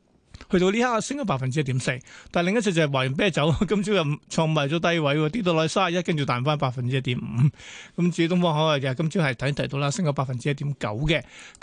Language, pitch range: Chinese, 140-180 Hz